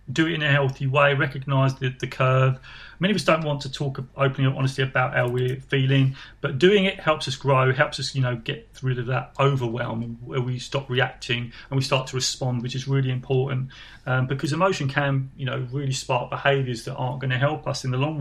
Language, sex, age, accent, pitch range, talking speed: English, male, 30-49, British, 130-155 Hz, 230 wpm